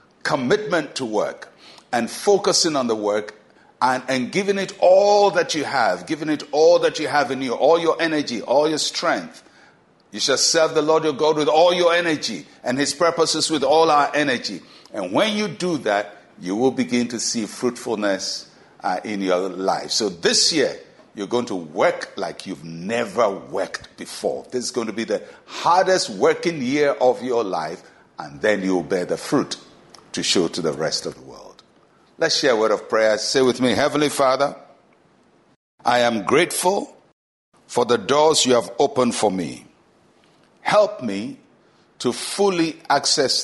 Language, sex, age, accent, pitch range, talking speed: English, male, 60-79, Nigerian, 120-165 Hz, 175 wpm